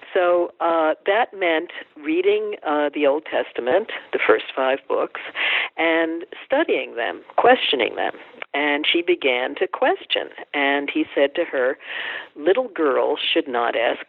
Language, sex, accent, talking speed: English, female, American, 140 wpm